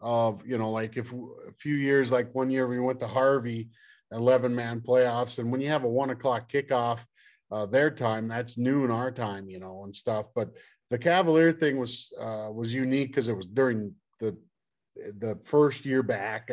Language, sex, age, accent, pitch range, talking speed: English, male, 40-59, American, 115-140 Hz, 195 wpm